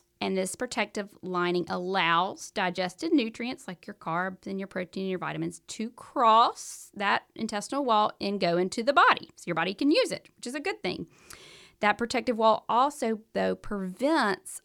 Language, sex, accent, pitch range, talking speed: English, female, American, 170-220 Hz, 175 wpm